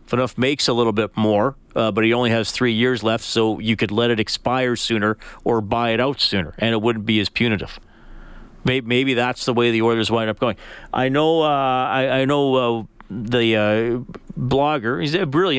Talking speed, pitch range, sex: 210 wpm, 115-135 Hz, male